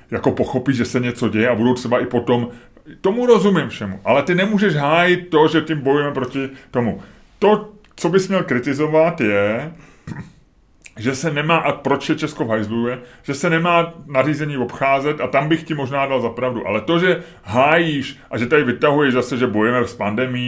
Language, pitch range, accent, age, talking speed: Czech, 125-160 Hz, native, 30-49, 190 wpm